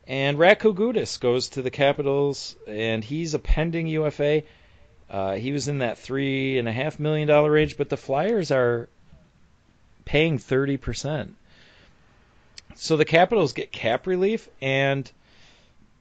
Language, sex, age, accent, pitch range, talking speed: English, male, 40-59, American, 105-140 Hz, 120 wpm